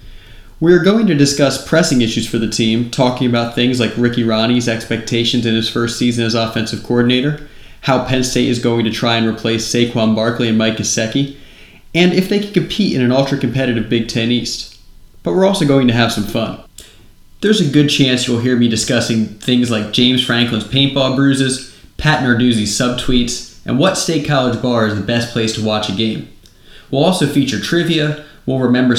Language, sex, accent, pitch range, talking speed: English, male, American, 115-145 Hz, 195 wpm